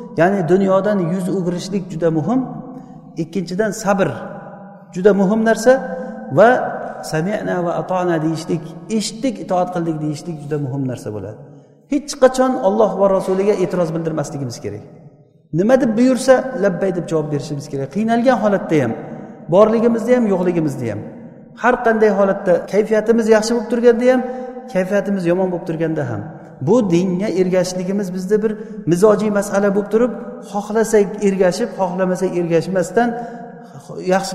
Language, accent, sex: Russian, Turkish, male